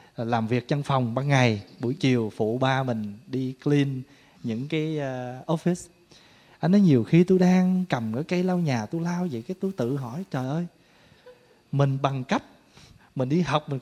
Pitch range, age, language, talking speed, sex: 135-190 Hz, 20-39, Vietnamese, 190 wpm, male